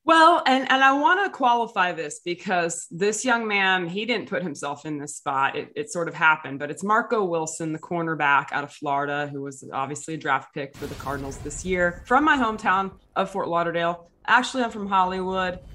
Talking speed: 205 wpm